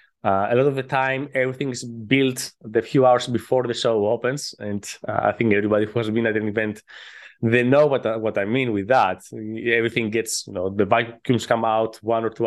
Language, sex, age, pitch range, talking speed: English, male, 20-39, 110-125 Hz, 220 wpm